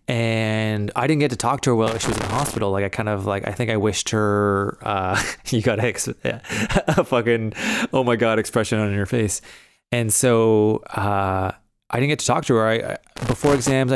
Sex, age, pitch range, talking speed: male, 20-39, 105-125 Hz, 230 wpm